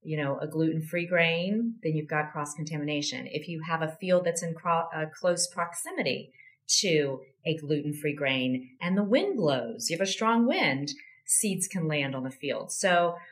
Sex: female